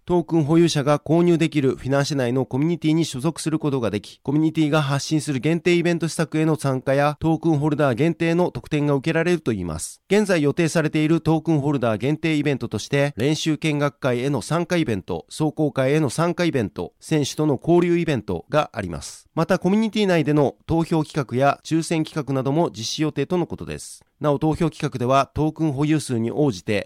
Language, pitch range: Japanese, 130-160 Hz